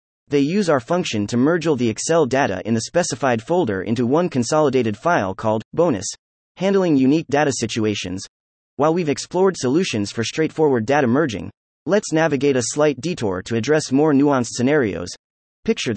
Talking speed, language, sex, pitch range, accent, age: 160 wpm, English, male, 115-155 Hz, American, 30-49